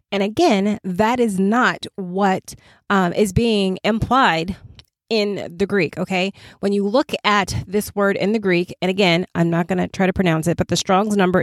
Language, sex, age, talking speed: English, female, 30-49, 195 wpm